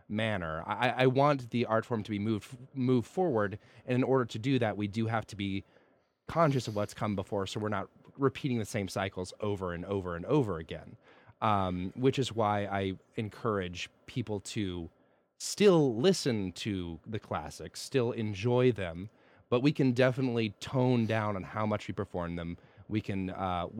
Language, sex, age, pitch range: English, male, 30-49, 100-125 Hz